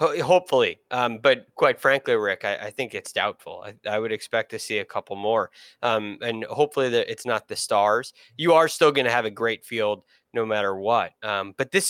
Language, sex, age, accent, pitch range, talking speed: English, male, 20-39, American, 110-165 Hz, 215 wpm